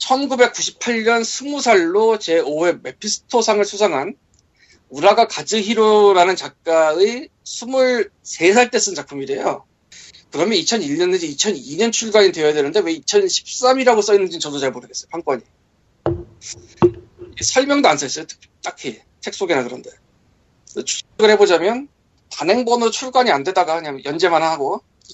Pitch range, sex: 170-245 Hz, male